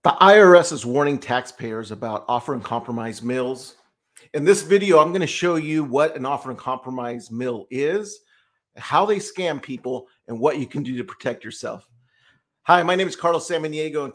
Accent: American